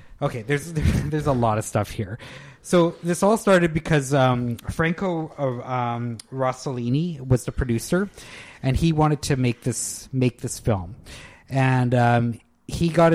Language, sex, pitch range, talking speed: English, male, 120-145 Hz, 155 wpm